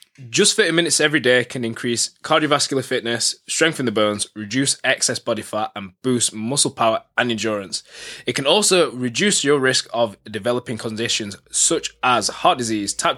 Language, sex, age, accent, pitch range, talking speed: English, male, 20-39, British, 105-130 Hz, 165 wpm